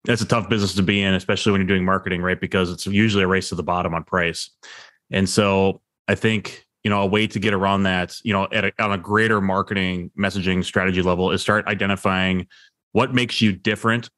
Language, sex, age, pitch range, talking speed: English, male, 20-39, 95-110 Hz, 215 wpm